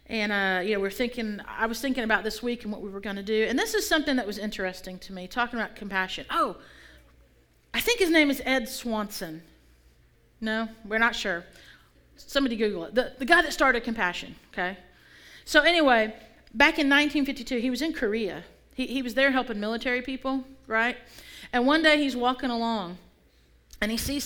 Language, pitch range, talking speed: English, 190-240 Hz, 195 wpm